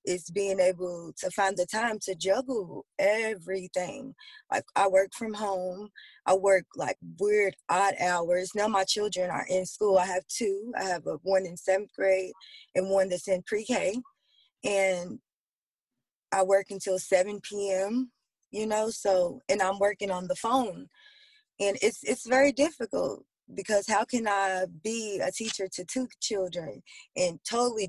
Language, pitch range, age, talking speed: English, 185-240 Hz, 20-39, 160 wpm